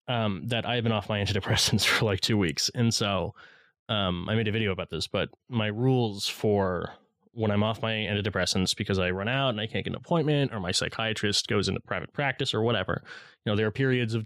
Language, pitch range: English, 105-125 Hz